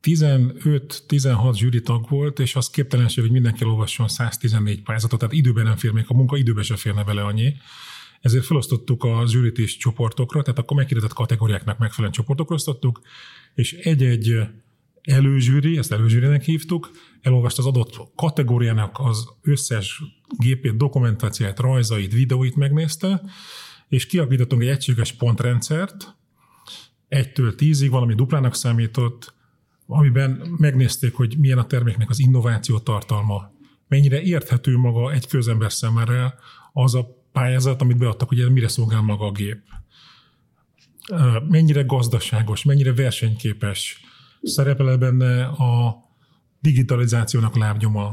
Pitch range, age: 115-140 Hz, 30-49